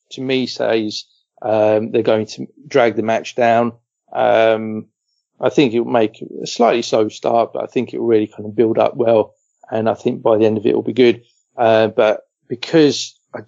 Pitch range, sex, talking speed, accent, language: 110-125 Hz, male, 200 wpm, British, English